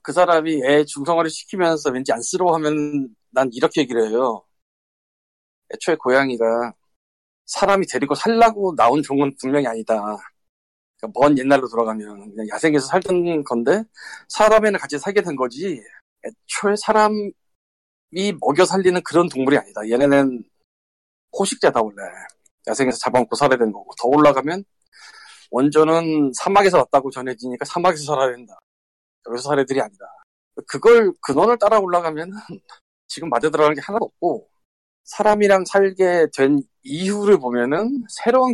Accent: native